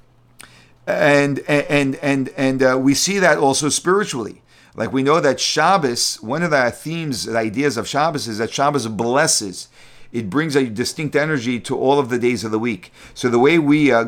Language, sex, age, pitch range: English, male, 50-69, 130-170 Hz